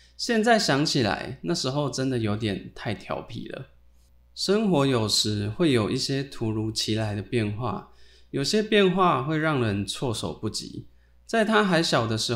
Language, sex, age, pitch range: Chinese, male, 20-39, 95-145 Hz